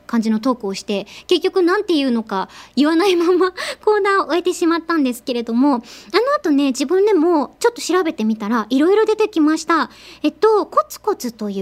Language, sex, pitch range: Japanese, male, 240-350 Hz